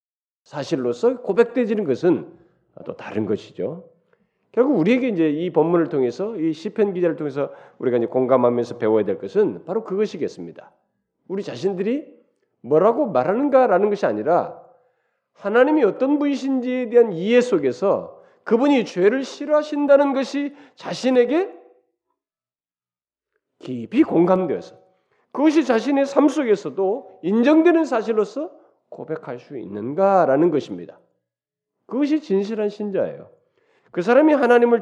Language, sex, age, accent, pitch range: Korean, male, 40-59, native, 175-275 Hz